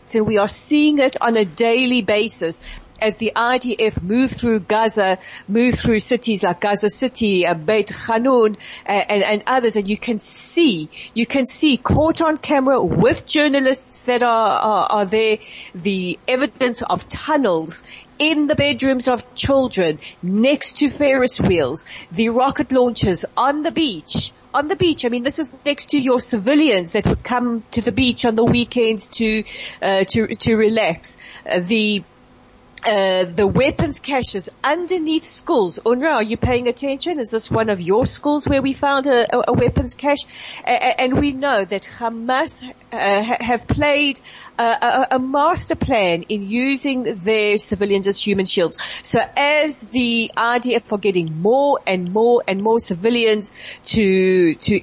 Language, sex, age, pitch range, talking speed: English, female, 40-59, 210-265 Hz, 165 wpm